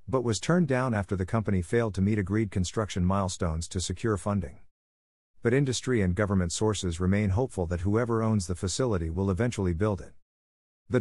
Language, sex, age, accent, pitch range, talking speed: English, male, 50-69, American, 90-115 Hz, 180 wpm